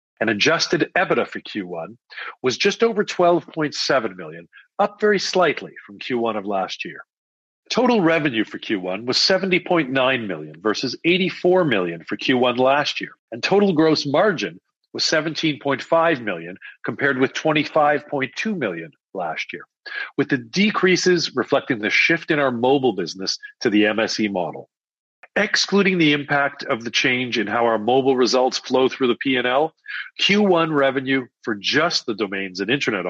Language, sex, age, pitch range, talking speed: English, male, 50-69, 120-175 Hz, 150 wpm